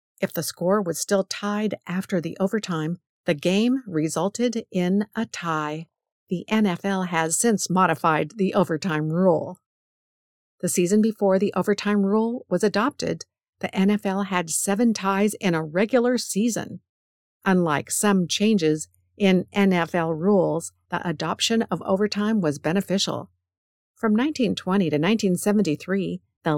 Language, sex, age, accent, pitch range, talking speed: English, female, 50-69, American, 165-210 Hz, 130 wpm